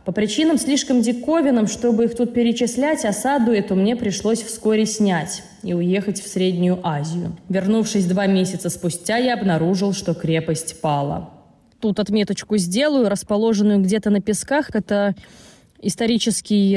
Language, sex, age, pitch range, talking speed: Russian, female, 20-39, 175-225 Hz, 130 wpm